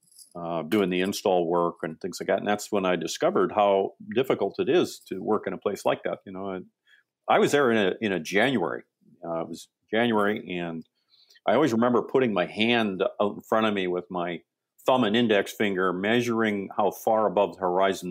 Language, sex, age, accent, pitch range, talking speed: English, male, 50-69, American, 90-115 Hz, 205 wpm